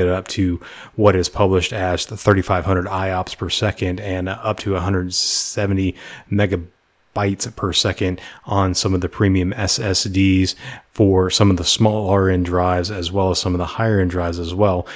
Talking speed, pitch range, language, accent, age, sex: 175 wpm, 90-100 Hz, English, American, 30-49, male